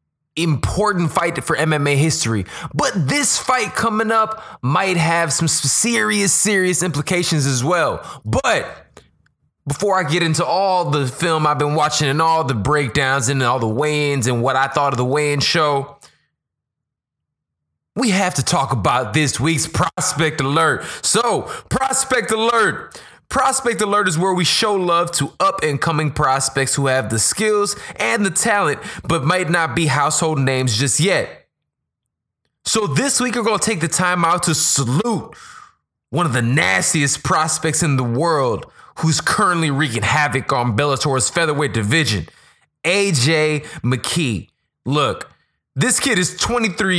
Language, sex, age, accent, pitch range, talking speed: English, male, 20-39, American, 140-180 Hz, 150 wpm